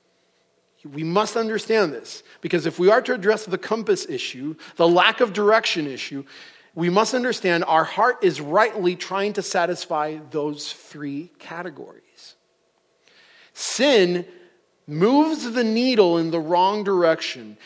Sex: male